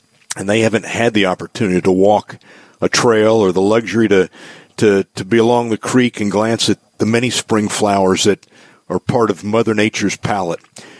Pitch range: 110-135 Hz